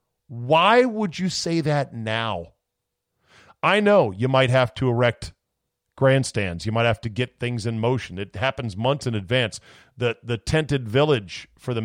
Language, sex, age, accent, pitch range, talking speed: English, male, 40-59, American, 110-140 Hz, 165 wpm